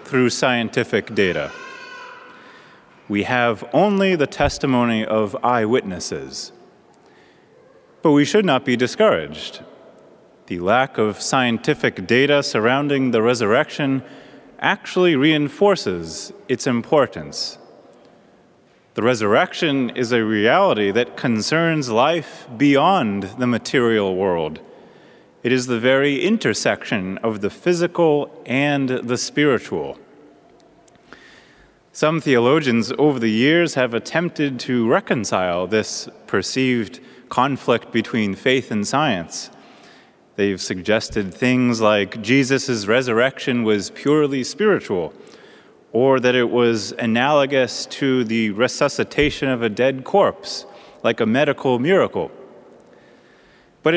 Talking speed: 105 wpm